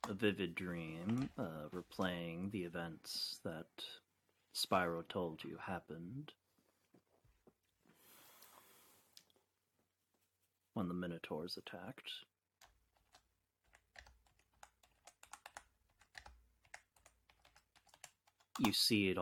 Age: 30-49